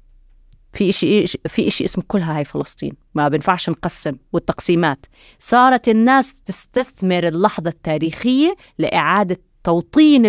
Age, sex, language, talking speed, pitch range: 20-39, female, Arabic, 105 wpm, 165-215 Hz